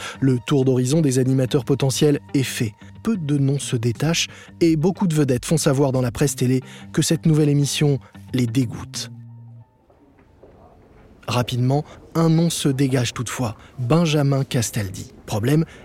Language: French